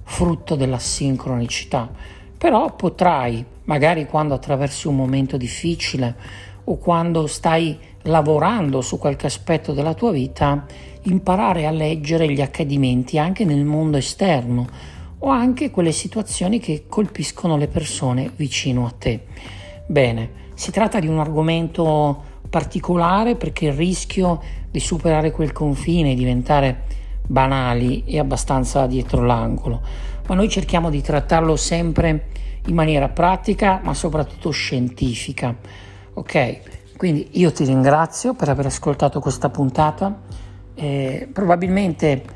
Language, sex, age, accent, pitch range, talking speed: Italian, male, 50-69, native, 130-170 Hz, 120 wpm